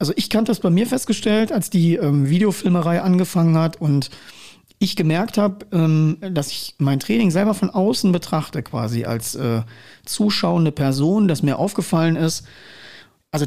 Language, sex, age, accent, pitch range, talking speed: German, male, 40-59, German, 150-200 Hz, 155 wpm